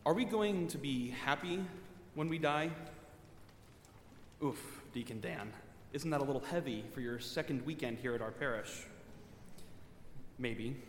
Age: 30-49